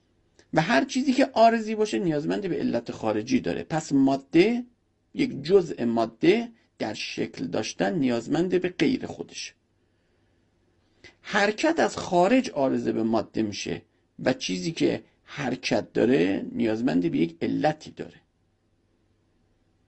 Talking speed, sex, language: 120 wpm, male, Persian